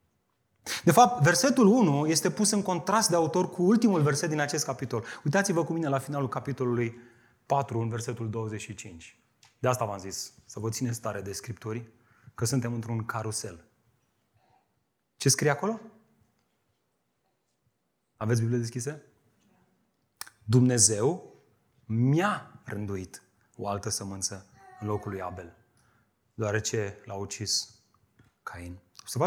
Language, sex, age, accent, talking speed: Romanian, male, 30-49, native, 125 wpm